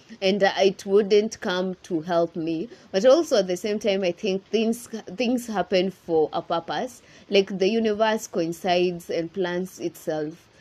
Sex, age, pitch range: female, 20-39, 170-205 Hz